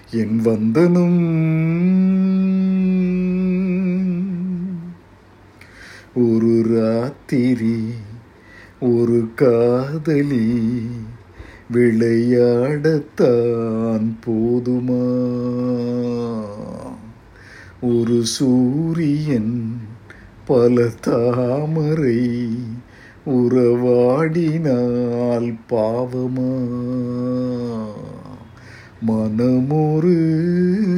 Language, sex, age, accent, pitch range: Tamil, male, 60-79, native, 120-185 Hz